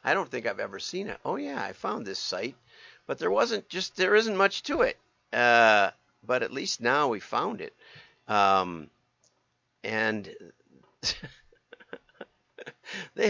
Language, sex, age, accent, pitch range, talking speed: English, male, 50-69, American, 105-145 Hz, 150 wpm